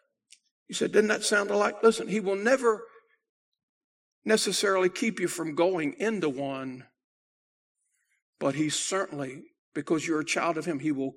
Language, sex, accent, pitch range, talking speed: English, male, American, 175-240 Hz, 150 wpm